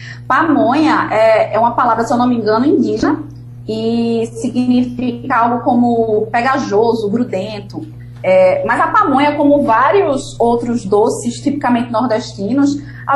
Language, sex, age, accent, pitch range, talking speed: Portuguese, female, 20-39, Brazilian, 205-280 Hz, 120 wpm